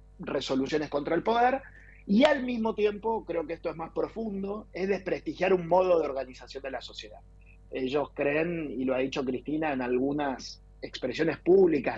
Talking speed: 170 wpm